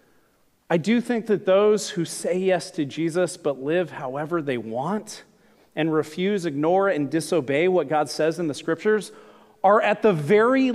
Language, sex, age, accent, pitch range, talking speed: English, male, 40-59, American, 145-200 Hz, 165 wpm